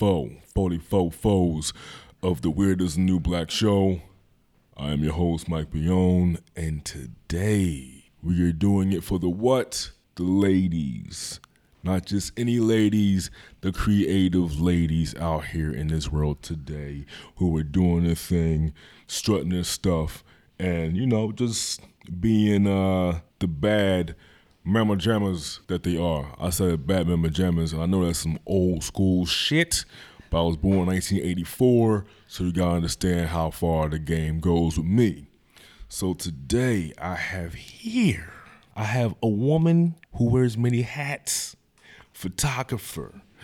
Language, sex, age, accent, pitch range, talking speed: English, male, 20-39, American, 85-105 Hz, 140 wpm